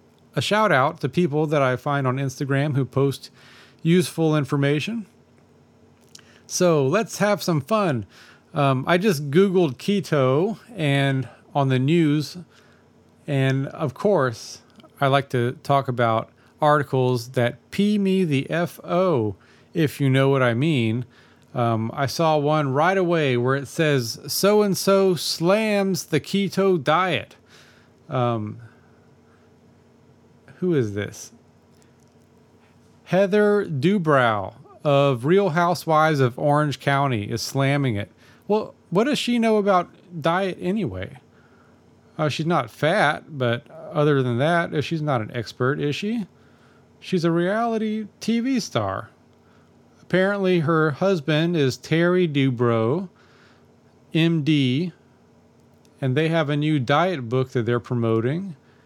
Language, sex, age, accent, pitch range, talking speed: English, male, 40-59, American, 130-180 Hz, 125 wpm